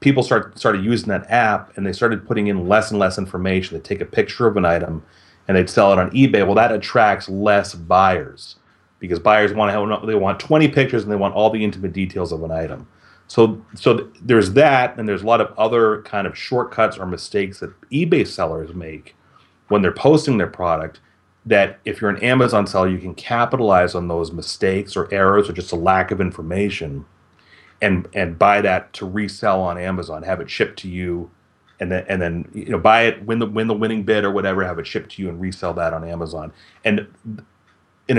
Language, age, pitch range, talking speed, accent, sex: English, 30-49, 90-110 Hz, 215 wpm, American, male